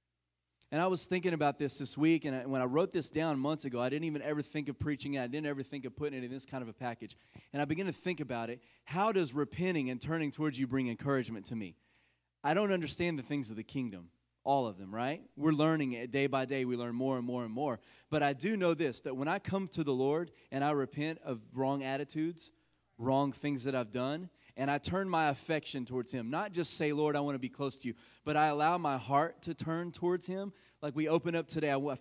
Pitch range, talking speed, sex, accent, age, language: 125-155 Hz, 260 wpm, male, American, 30-49, English